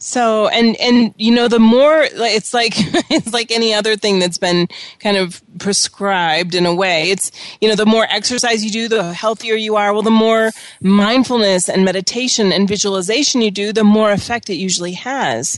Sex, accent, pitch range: female, American, 200-240 Hz